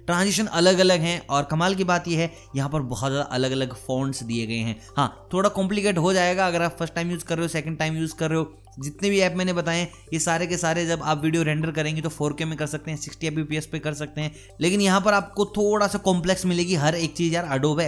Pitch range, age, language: 145-180 Hz, 20-39, Hindi